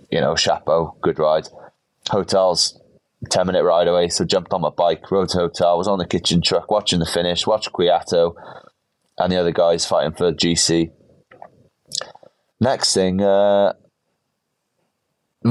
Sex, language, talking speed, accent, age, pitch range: male, English, 145 wpm, British, 20-39, 85-105 Hz